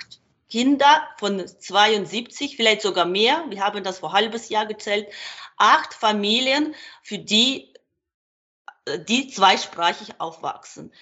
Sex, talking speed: female, 110 wpm